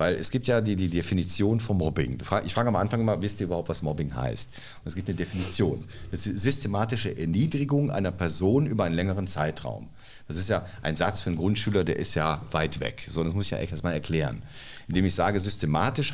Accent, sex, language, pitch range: German, male, German, 90-115 Hz